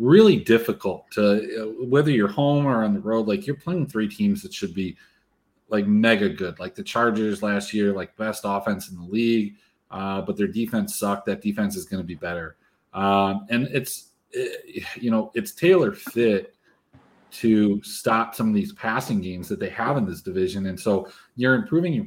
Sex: male